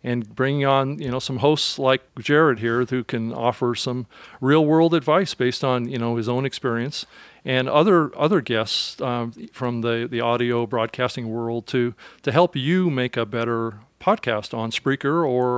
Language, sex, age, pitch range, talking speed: English, male, 40-59, 120-145 Hz, 175 wpm